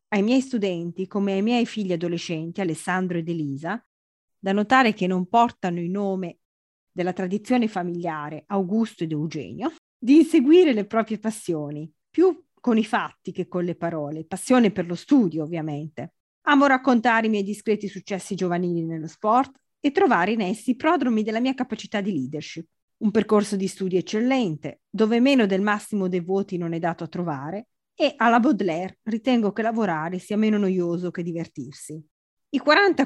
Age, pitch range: 30-49, 180-245 Hz